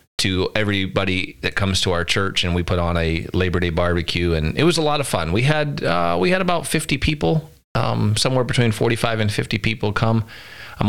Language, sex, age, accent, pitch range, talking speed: English, male, 30-49, American, 90-115 Hz, 215 wpm